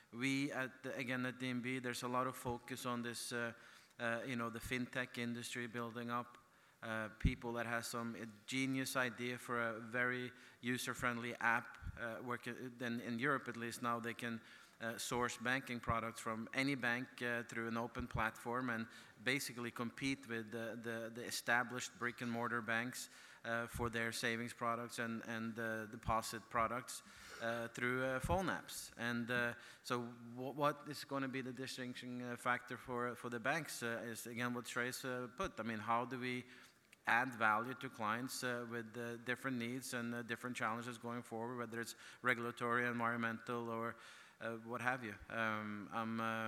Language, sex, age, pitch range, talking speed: English, male, 30-49, 115-125 Hz, 180 wpm